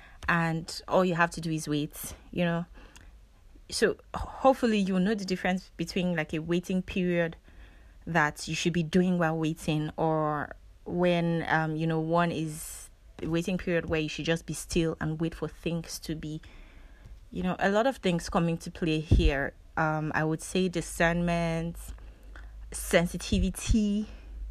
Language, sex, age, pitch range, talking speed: English, female, 20-39, 155-185 Hz, 160 wpm